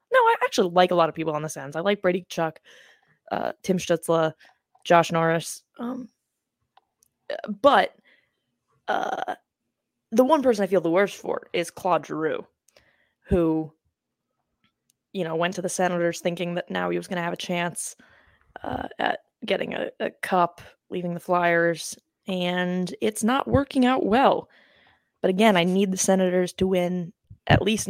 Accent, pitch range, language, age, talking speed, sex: American, 175-215 Hz, English, 20-39, 165 wpm, female